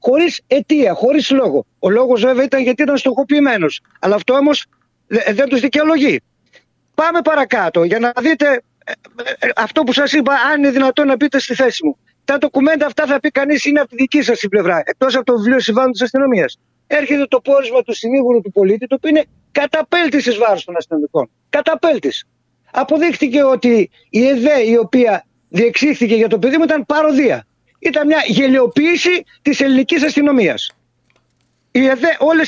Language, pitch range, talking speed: Greek, 215-285 Hz, 165 wpm